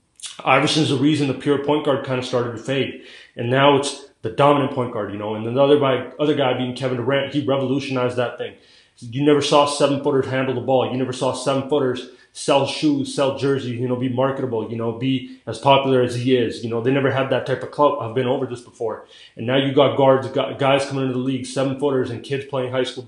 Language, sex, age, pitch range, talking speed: English, male, 20-39, 125-140 Hz, 245 wpm